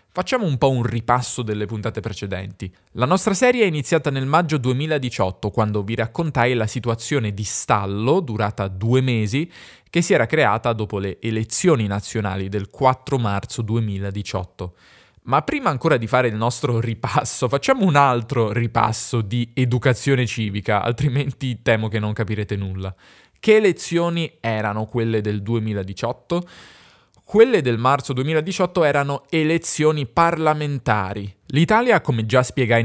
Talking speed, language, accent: 140 wpm, Italian, native